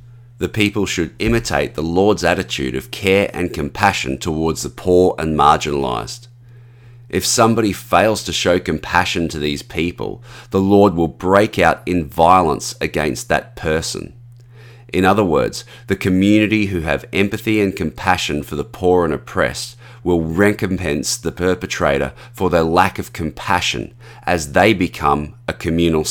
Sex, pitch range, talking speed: male, 80-110 Hz, 145 wpm